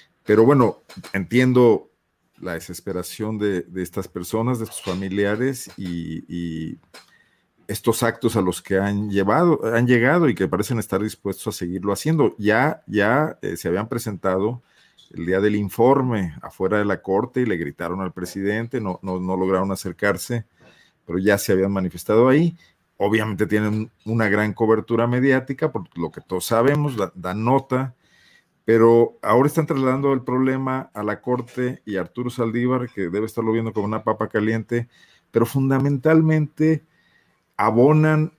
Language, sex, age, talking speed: Spanish, male, 50-69, 155 wpm